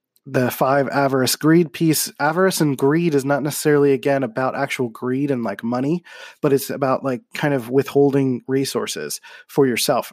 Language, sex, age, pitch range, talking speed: English, male, 20-39, 120-145 Hz, 165 wpm